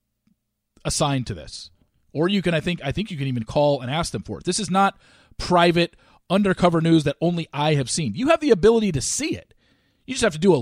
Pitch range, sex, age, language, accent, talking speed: 120-190 Hz, male, 40-59, English, American, 245 wpm